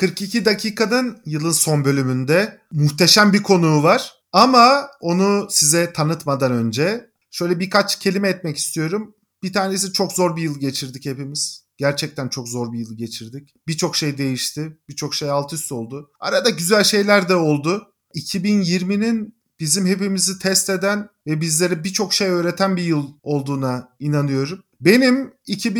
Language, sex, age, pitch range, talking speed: Turkish, male, 40-59, 155-205 Hz, 140 wpm